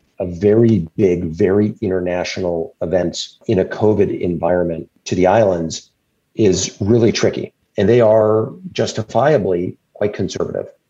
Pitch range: 90-110 Hz